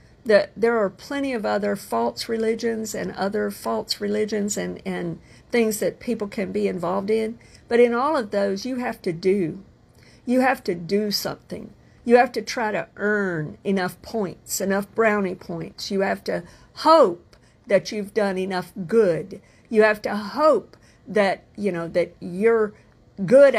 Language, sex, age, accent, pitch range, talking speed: English, female, 50-69, American, 185-230 Hz, 160 wpm